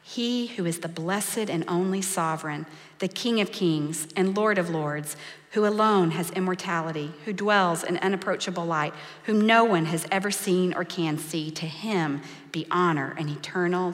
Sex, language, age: female, English, 40-59